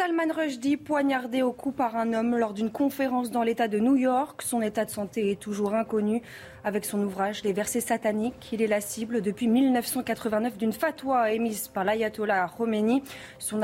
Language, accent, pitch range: French, French, 205-255 Hz